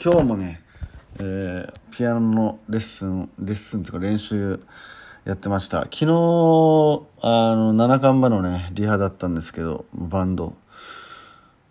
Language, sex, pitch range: Japanese, male, 95-120 Hz